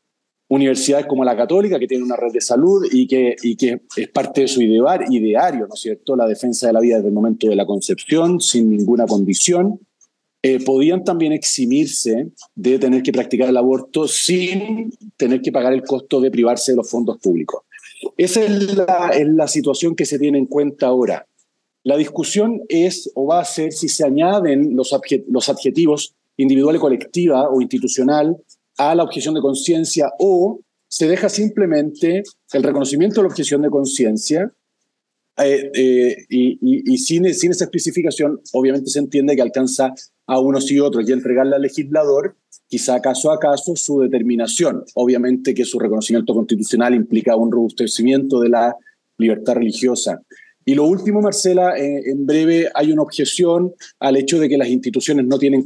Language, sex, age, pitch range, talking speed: Spanish, male, 40-59, 125-175 Hz, 170 wpm